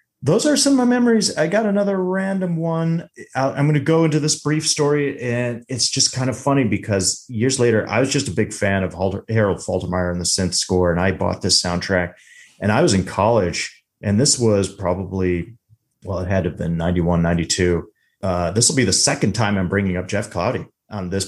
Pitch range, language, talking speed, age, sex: 90-125 Hz, English, 215 wpm, 30-49, male